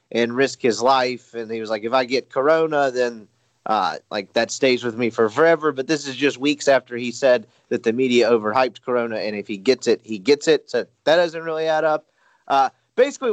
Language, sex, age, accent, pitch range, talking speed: English, male, 30-49, American, 130-185 Hz, 225 wpm